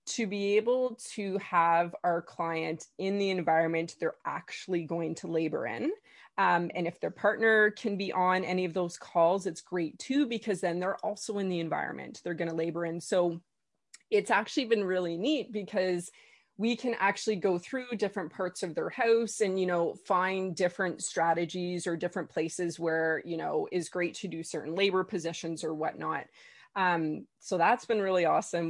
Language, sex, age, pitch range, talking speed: English, female, 20-39, 170-205 Hz, 180 wpm